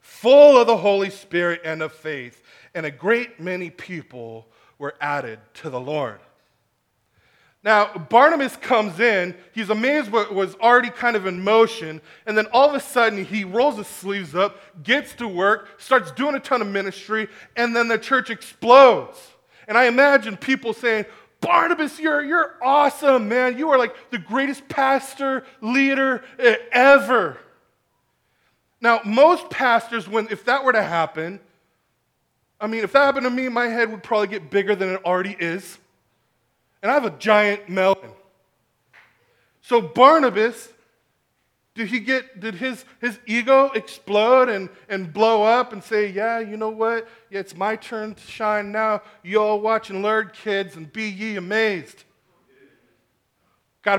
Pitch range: 195-250 Hz